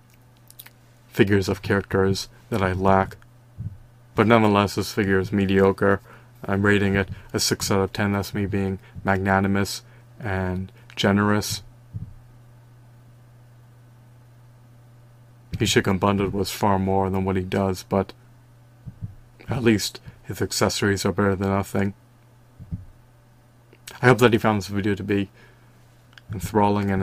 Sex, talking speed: male, 120 wpm